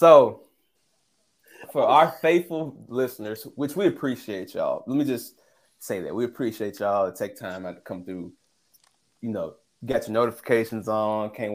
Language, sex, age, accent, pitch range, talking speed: English, male, 20-39, American, 100-130 Hz, 155 wpm